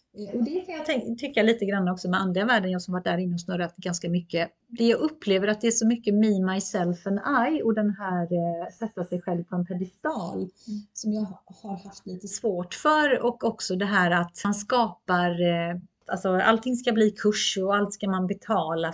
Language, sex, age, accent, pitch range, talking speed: Swedish, female, 30-49, native, 175-220 Hz, 210 wpm